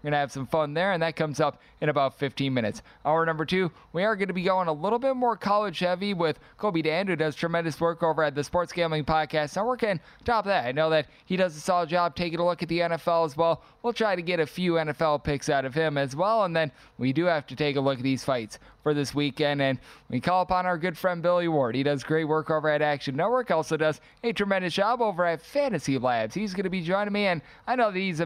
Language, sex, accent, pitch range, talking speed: English, male, American, 145-180 Hz, 270 wpm